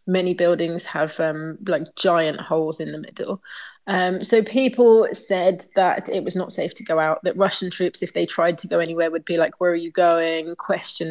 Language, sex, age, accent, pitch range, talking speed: Czech, female, 20-39, British, 170-195 Hz, 210 wpm